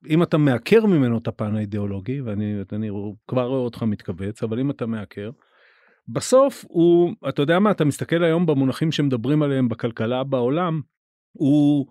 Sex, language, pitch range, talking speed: male, Hebrew, 125-160 Hz, 155 wpm